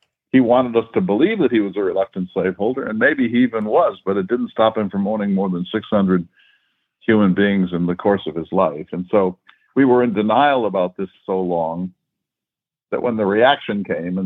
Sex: male